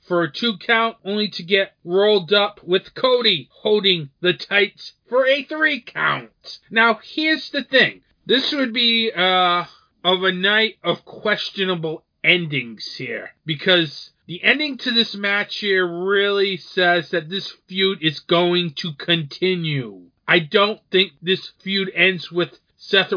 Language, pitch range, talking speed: English, 170-205 Hz, 150 wpm